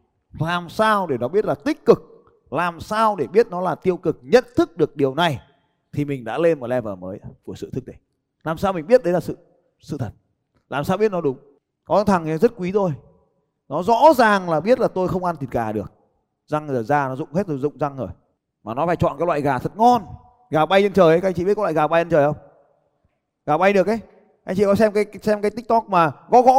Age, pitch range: 20-39, 140-200 Hz